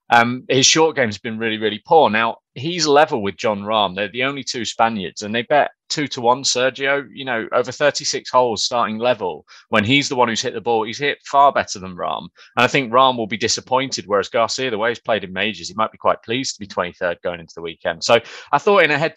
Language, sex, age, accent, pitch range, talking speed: English, male, 30-49, British, 105-135 Hz, 255 wpm